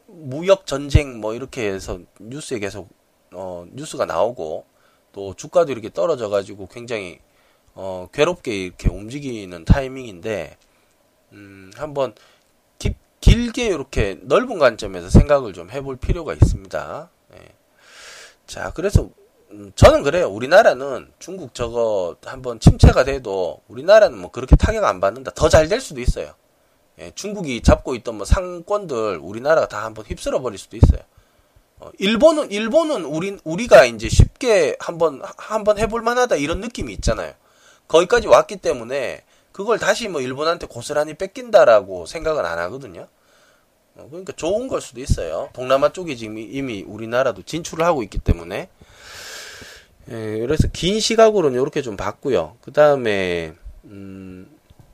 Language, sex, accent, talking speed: English, male, Korean, 125 wpm